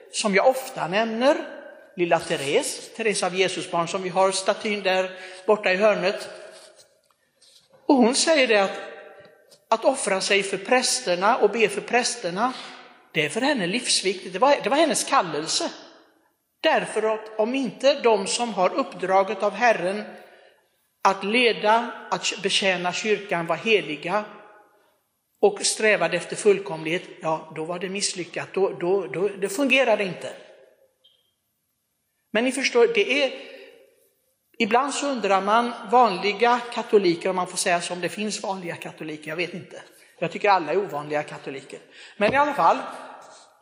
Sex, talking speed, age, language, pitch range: male, 150 wpm, 60-79, Swedish, 185-250 Hz